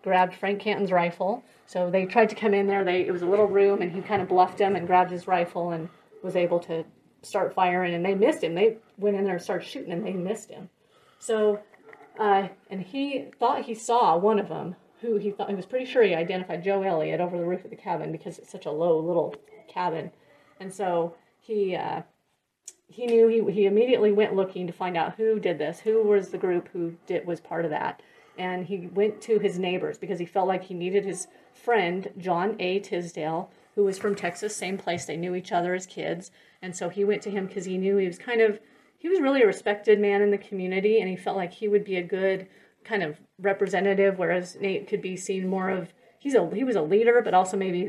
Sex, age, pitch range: female, 30-49, 180-210 Hz